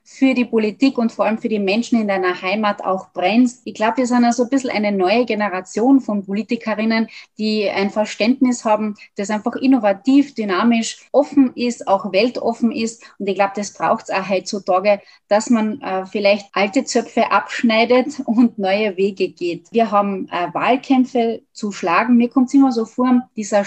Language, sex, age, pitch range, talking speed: German, female, 20-39, 195-240 Hz, 180 wpm